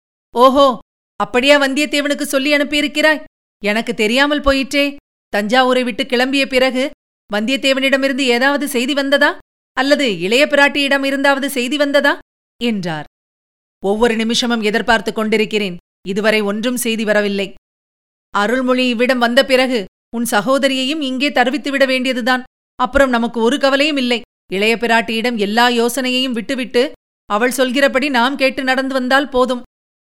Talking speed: 115 wpm